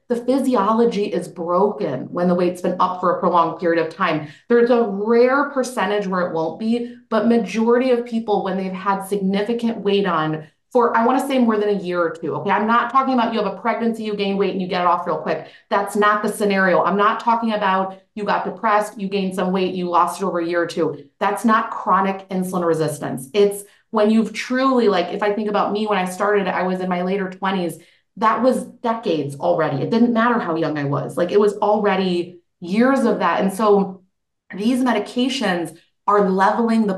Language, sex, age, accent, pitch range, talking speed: English, female, 30-49, American, 180-225 Hz, 220 wpm